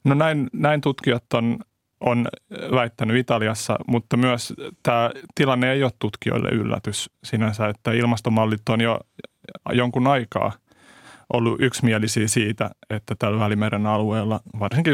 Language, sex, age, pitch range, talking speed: Finnish, male, 30-49, 110-125 Hz, 125 wpm